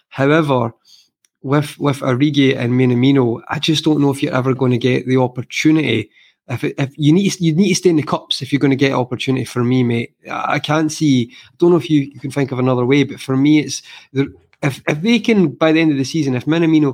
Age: 20-39